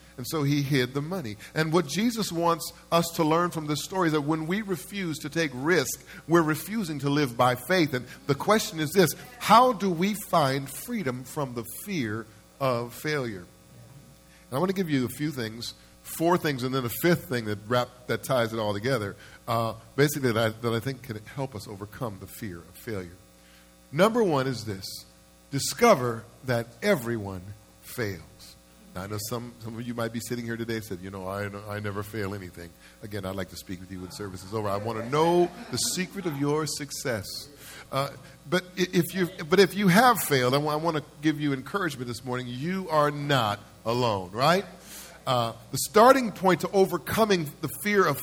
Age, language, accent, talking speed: 50-69, English, American, 200 wpm